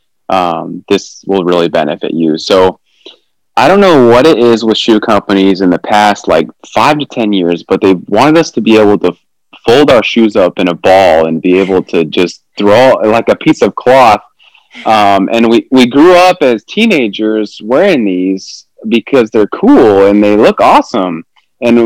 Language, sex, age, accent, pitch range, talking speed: English, male, 20-39, American, 100-135 Hz, 185 wpm